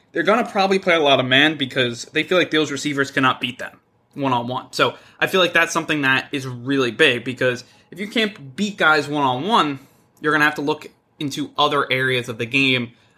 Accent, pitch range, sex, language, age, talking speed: American, 125-160 Hz, male, English, 20-39, 220 wpm